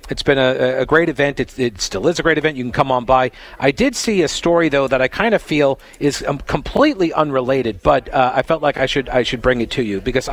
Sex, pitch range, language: male, 120-150 Hz, English